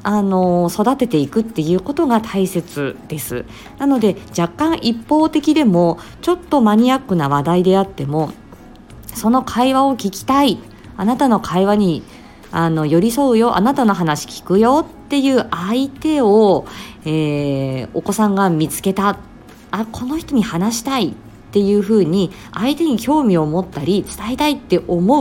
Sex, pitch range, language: female, 160-255 Hz, Japanese